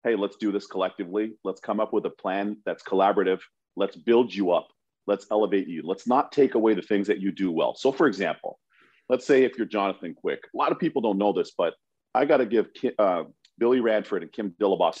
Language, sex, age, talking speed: English, male, 40-59, 225 wpm